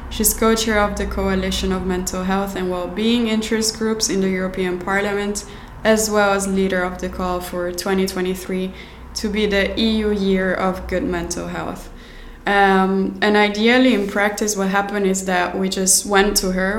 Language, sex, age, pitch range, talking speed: English, female, 20-39, 190-210 Hz, 170 wpm